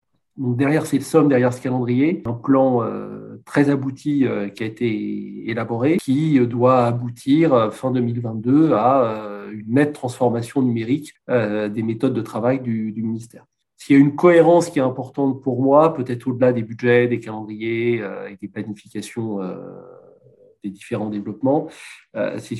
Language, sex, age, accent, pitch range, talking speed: French, male, 40-59, French, 115-135 Hz, 165 wpm